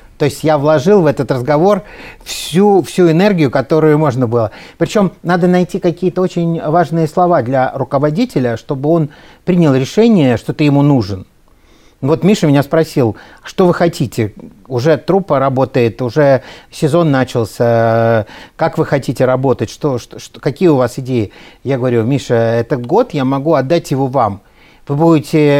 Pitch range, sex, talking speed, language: 135-165 Hz, male, 150 wpm, Russian